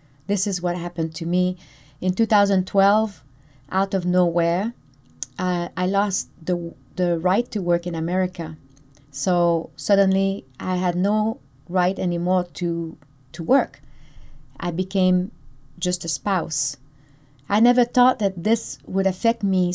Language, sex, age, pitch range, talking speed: English, female, 30-49, 155-195 Hz, 135 wpm